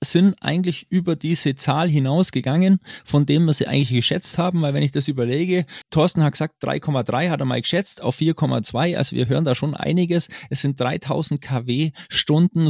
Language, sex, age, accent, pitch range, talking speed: German, male, 20-39, German, 135-165 Hz, 185 wpm